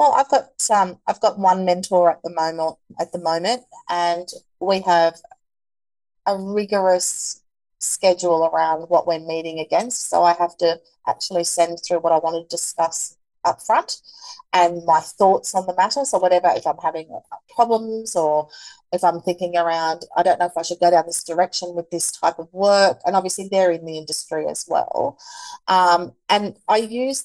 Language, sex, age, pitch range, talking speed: English, female, 30-49, 170-200 Hz, 185 wpm